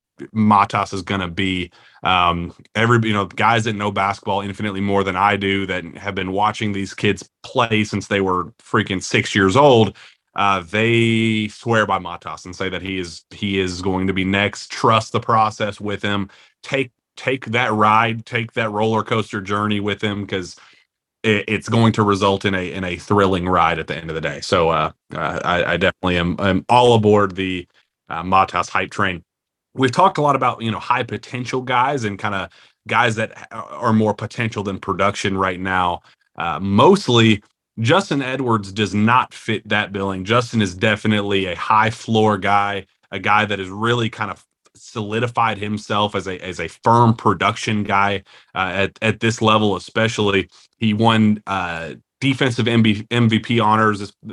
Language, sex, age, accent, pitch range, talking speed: English, male, 30-49, American, 95-115 Hz, 180 wpm